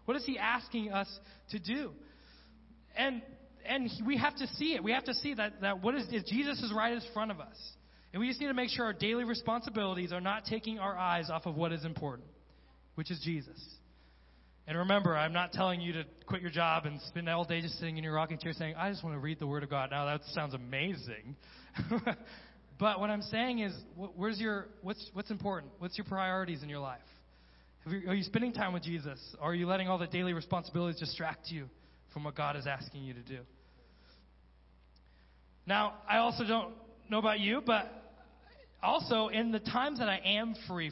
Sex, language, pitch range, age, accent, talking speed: male, English, 145-220 Hz, 20-39, American, 210 wpm